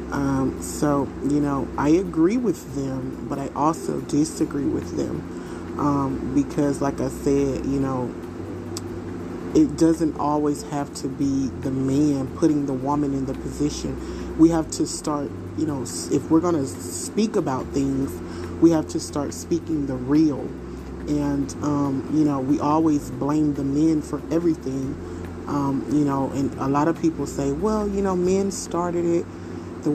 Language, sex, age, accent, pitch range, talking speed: English, male, 30-49, American, 130-155 Hz, 165 wpm